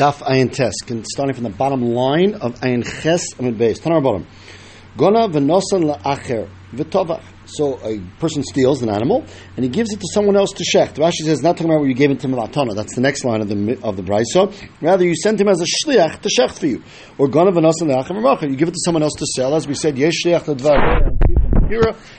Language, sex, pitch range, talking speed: English, male, 130-190 Hz, 235 wpm